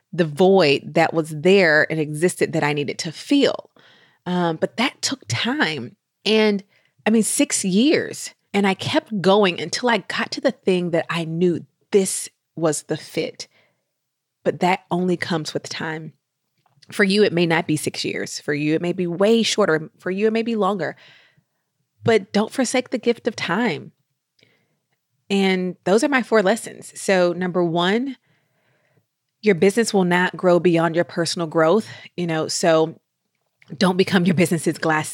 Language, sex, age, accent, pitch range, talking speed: English, female, 30-49, American, 155-195 Hz, 170 wpm